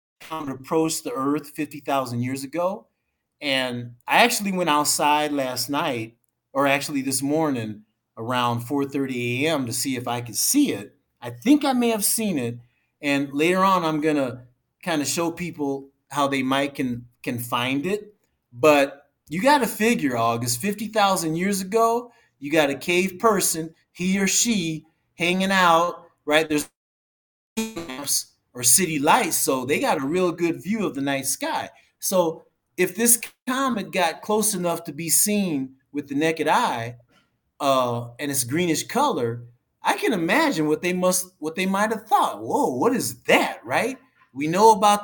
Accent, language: American, English